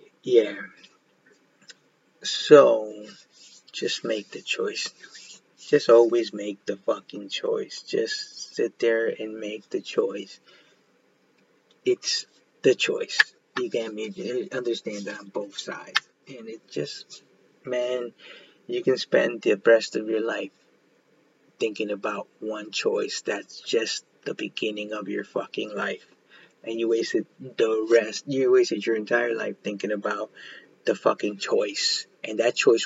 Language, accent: English, American